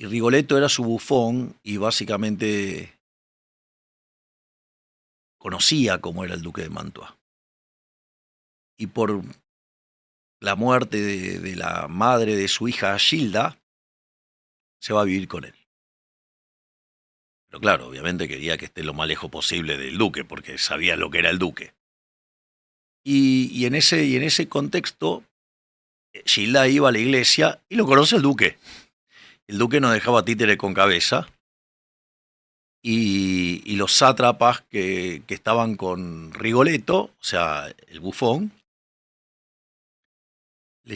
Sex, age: male, 40-59